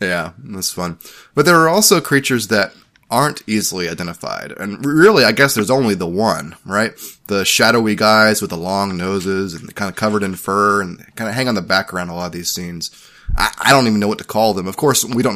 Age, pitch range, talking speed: 20-39, 90-105 Hz, 230 wpm